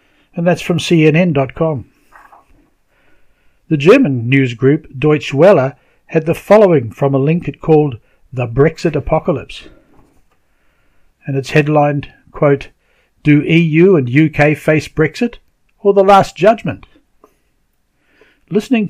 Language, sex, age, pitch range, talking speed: English, male, 60-79, 140-180 Hz, 110 wpm